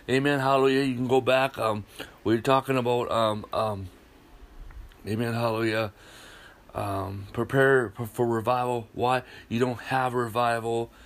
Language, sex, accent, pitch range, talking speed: English, male, American, 110-135 Hz, 135 wpm